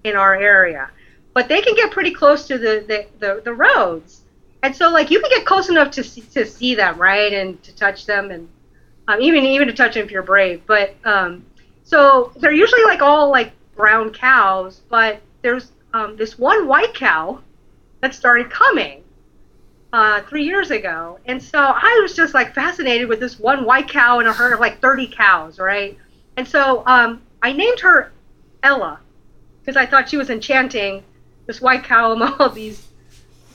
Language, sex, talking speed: English, female, 190 wpm